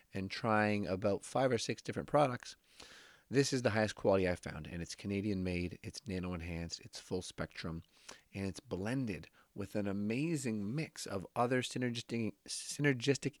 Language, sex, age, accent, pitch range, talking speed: English, male, 30-49, American, 95-120 Hz, 150 wpm